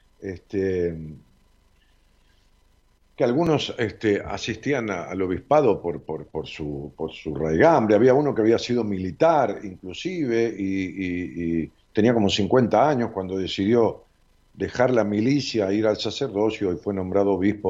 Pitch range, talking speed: 85-115 Hz, 130 wpm